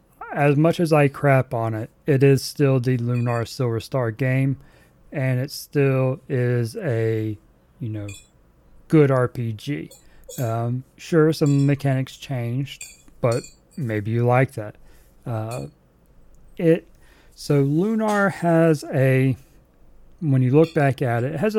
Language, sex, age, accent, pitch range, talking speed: English, male, 40-59, American, 115-145 Hz, 135 wpm